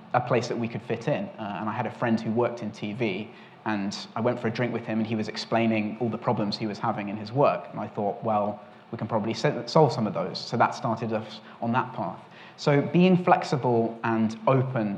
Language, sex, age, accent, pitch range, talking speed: English, male, 30-49, British, 110-125 Hz, 250 wpm